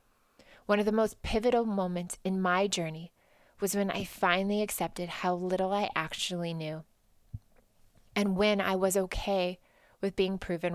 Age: 20-39